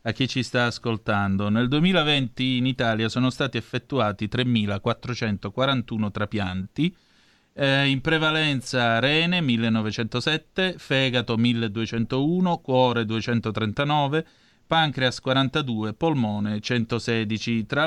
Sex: male